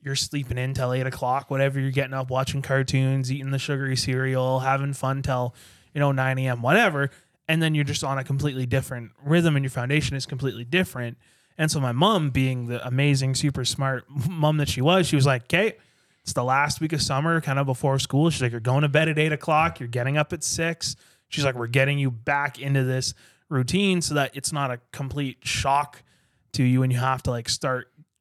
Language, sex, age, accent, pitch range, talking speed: English, male, 20-39, American, 125-150 Hz, 220 wpm